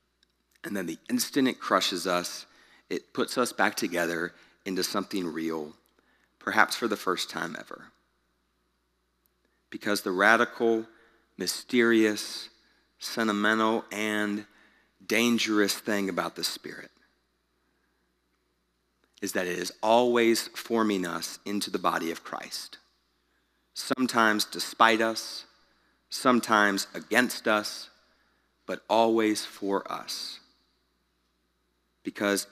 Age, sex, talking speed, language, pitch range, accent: 30-49, male, 100 wpm, English, 80-115 Hz, American